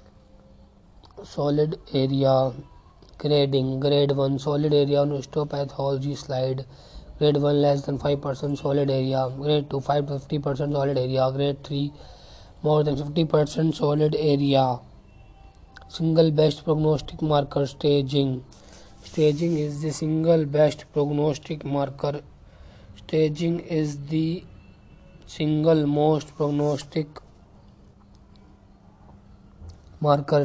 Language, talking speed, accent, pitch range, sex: English, 100 wpm, Indian, 135-155 Hz, male